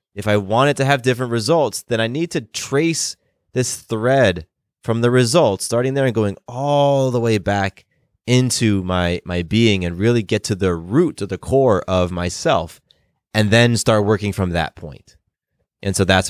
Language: English